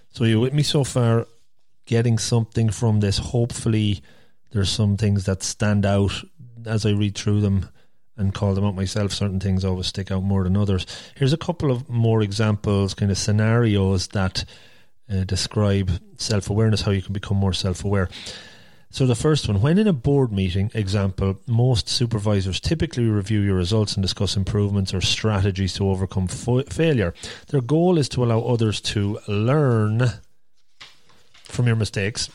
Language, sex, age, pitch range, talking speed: English, male, 30-49, 100-115 Hz, 165 wpm